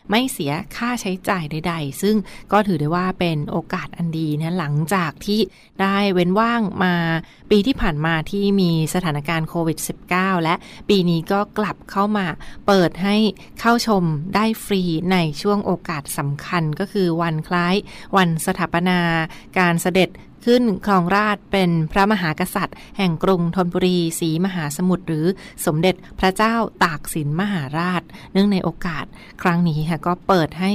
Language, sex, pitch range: Thai, female, 170-205 Hz